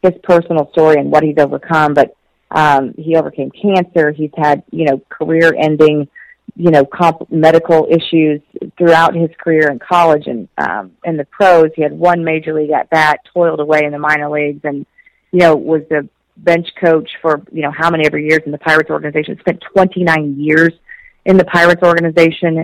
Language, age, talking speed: English, 40-59, 190 wpm